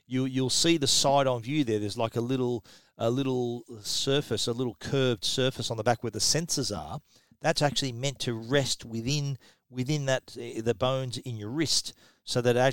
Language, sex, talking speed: English, male, 190 wpm